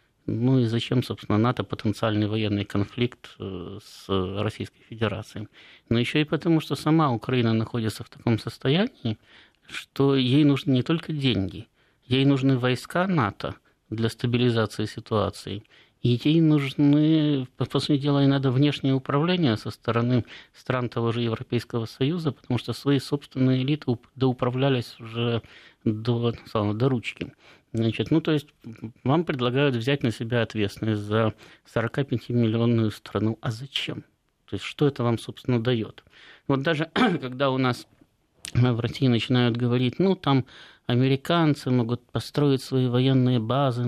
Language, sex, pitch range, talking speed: Russian, male, 115-140 Hz, 140 wpm